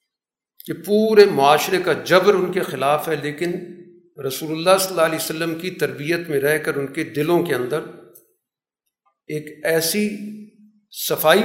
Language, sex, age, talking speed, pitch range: Urdu, male, 50-69, 150 wpm, 150-205 Hz